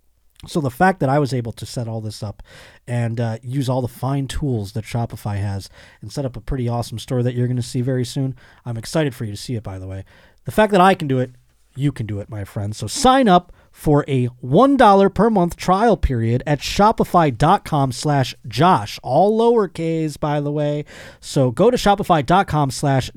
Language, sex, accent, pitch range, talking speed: English, male, American, 115-175 Hz, 215 wpm